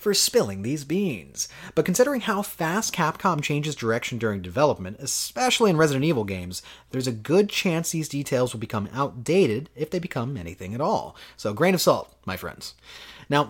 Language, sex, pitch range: English, male, 125-190 Hz